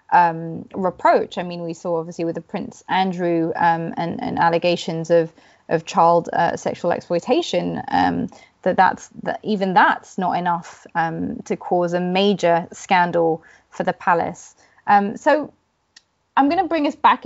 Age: 20-39